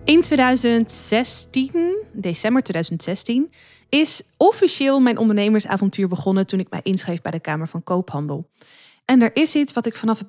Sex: female